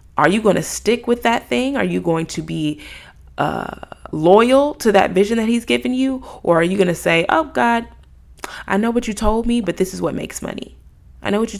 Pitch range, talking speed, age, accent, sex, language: 155-210 Hz, 240 wpm, 20-39, American, female, English